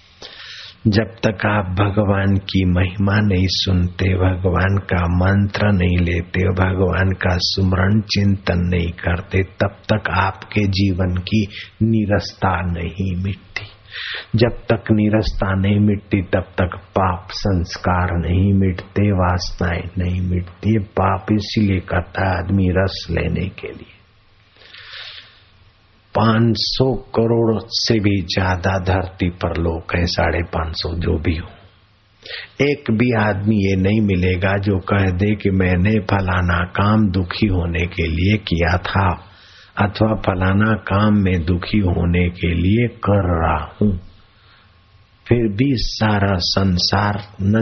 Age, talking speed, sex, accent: 50-69, 120 wpm, male, native